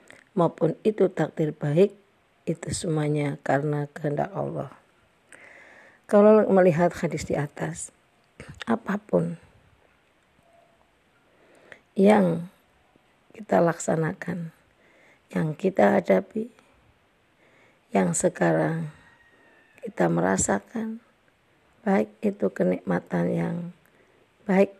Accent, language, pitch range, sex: native, Indonesian, 155-190 Hz, female